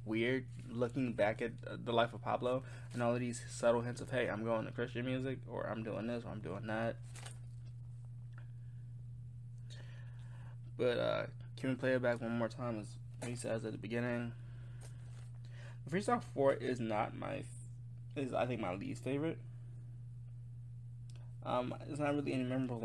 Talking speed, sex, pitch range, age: 165 wpm, male, 120-130 Hz, 20-39